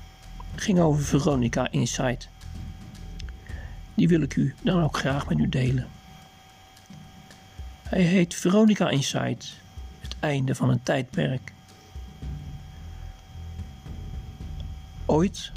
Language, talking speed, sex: Dutch, 95 wpm, male